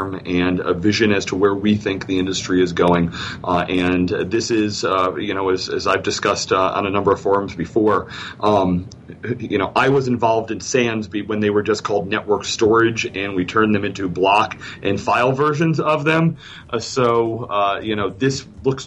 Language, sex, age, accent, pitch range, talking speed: English, male, 40-59, American, 90-115 Hz, 200 wpm